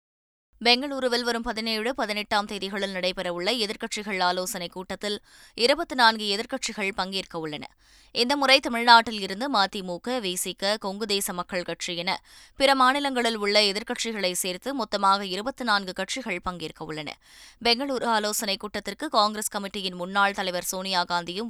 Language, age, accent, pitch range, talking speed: Tamil, 20-39, native, 185-230 Hz, 110 wpm